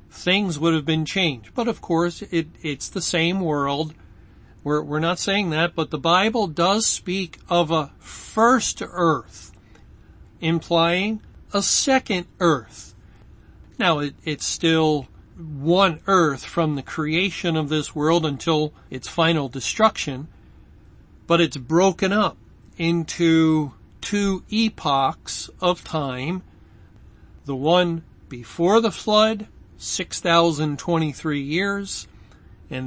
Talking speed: 115 wpm